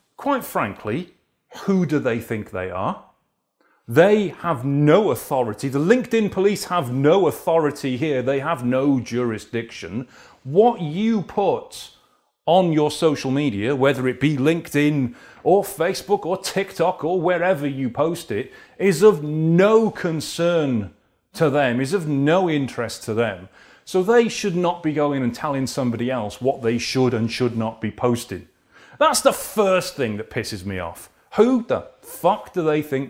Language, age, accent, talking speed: English, 30-49, British, 160 wpm